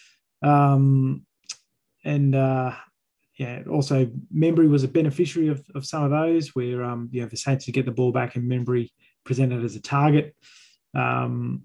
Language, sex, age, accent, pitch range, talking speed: English, male, 20-39, Australian, 130-160 Hz, 180 wpm